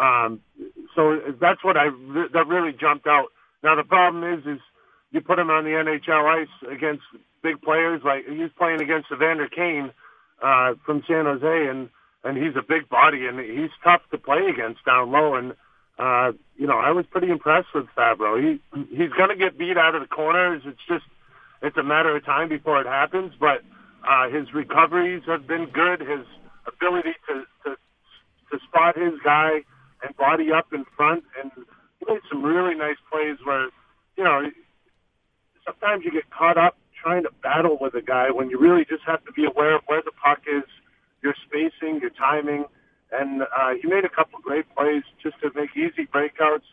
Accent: American